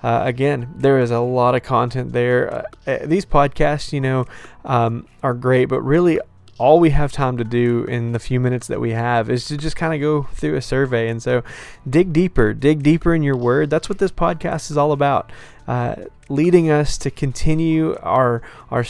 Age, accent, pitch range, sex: 20-39, American, 120-140 Hz, male